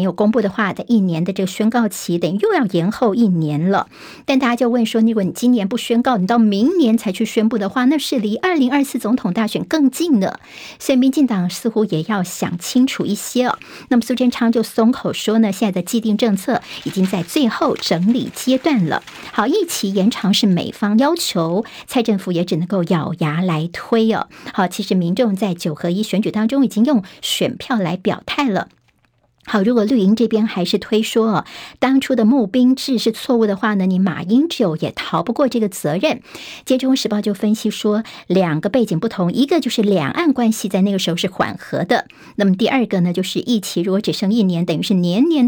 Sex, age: male, 50-69